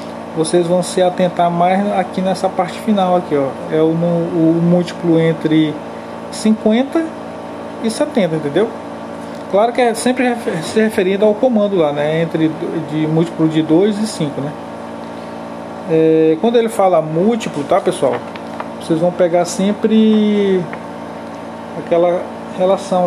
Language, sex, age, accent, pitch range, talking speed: Portuguese, male, 20-39, Brazilian, 160-235 Hz, 125 wpm